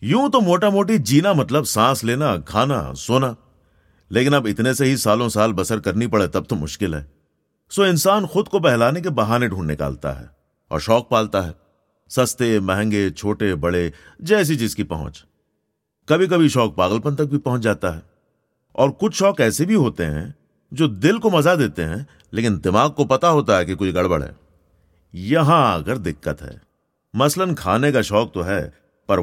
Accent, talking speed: native, 185 wpm